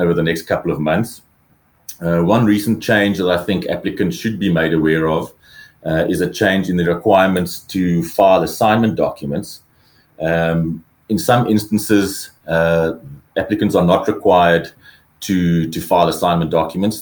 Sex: male